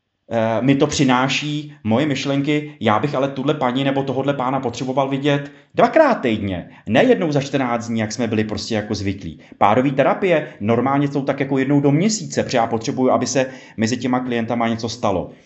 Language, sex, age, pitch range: Czech, male, 30-49, 115-145 Hz